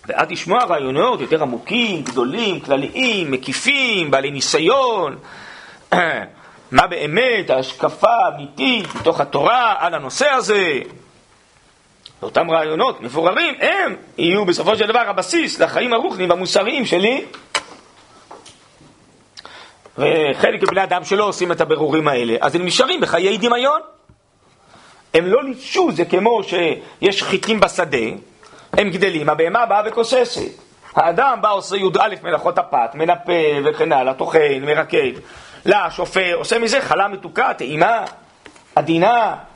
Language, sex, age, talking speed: Hebrew, male, 40-59, 115 wpm